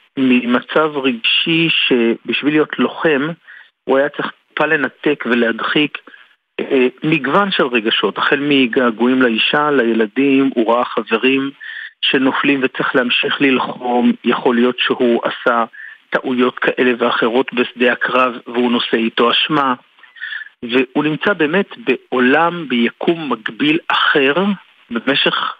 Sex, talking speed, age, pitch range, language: male, 110 wpm, 50-69, 125-155 Hz, Hebrew